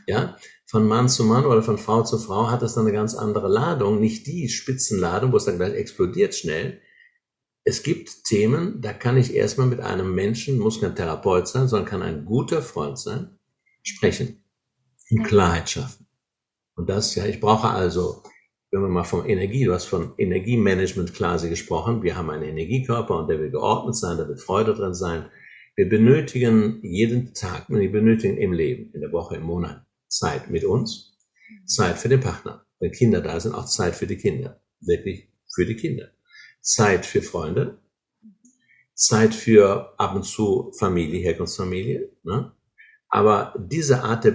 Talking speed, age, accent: 175 wpm, 60-79, German